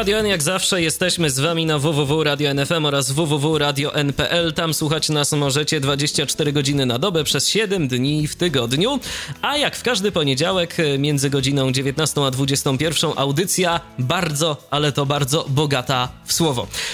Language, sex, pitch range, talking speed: Polish, male, 140-175 Hz, 150 wpm